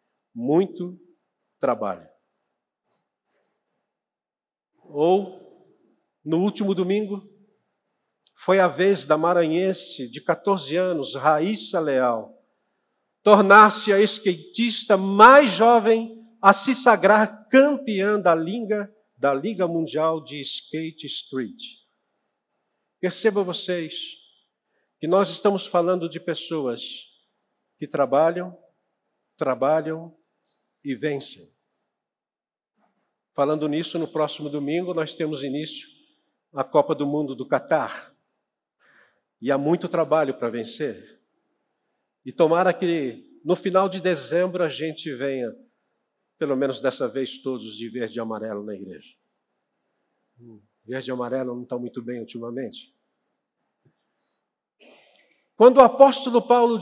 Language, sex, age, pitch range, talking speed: Portuguese, male, 50-69, 145-210 Hz, 105 wpm